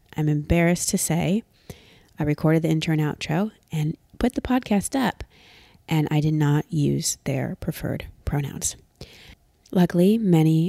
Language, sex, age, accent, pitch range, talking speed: English, female, 20-39, American, 150-190 Hz, 135 wpm